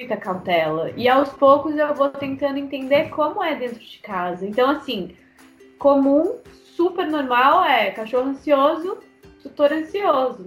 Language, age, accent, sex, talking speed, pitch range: Portuguese, 20-39, Brazilian, female, 140 wpm, 200-265 Hz